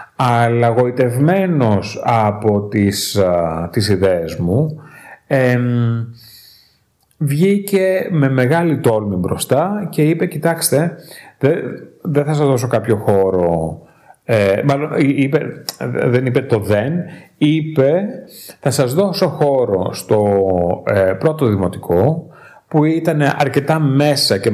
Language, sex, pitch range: Greek, male, 105-150 Hz